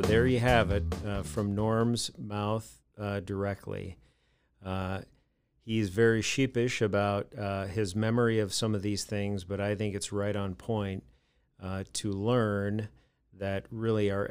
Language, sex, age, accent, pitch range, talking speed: English, male, 40-59, American, 95-105 Hz, 155 wpm